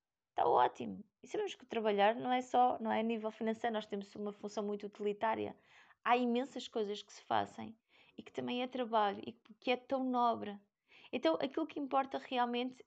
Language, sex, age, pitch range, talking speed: Portuguese, female, 20-39, 200-245 Hz, 185 wpm